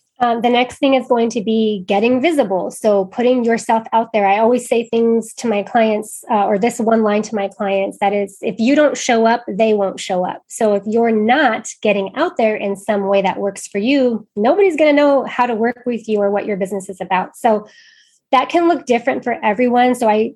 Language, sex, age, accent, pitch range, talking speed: English, female, 20-39, American, 200-240 Hz, 235 wpm